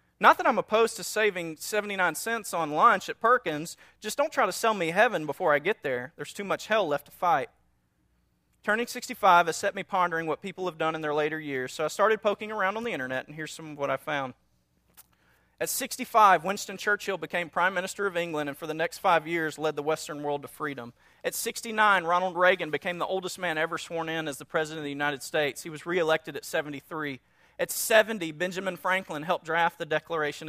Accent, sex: American, male